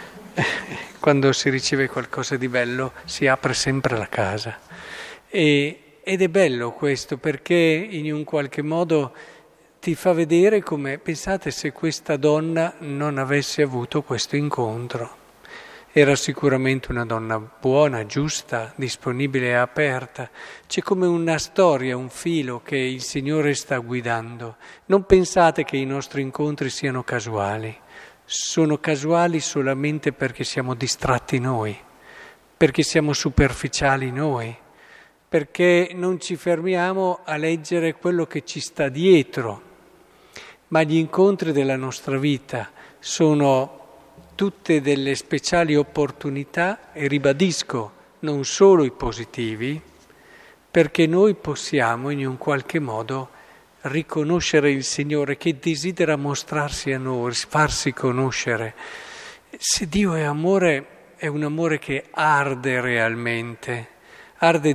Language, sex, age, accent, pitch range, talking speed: Italian, male, 50-69, native, 130-160 Hz, 120 wpm